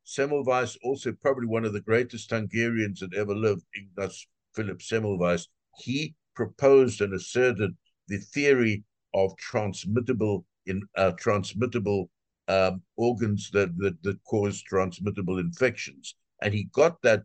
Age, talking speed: 60-79, 130 wpm